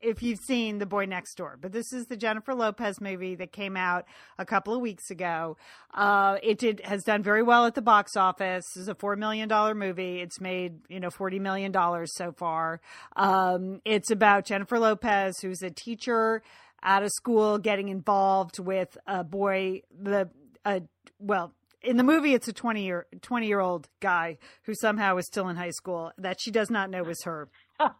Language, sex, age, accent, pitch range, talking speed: English, female, 40-59, American, 185-225 Hz, 190 wpm